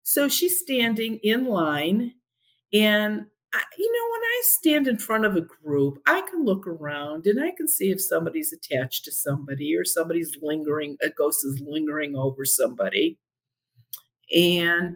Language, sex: English, female